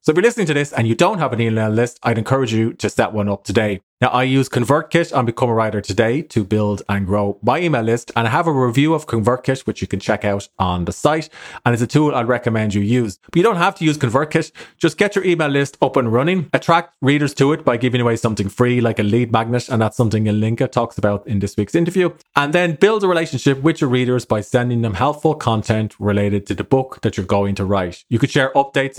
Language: English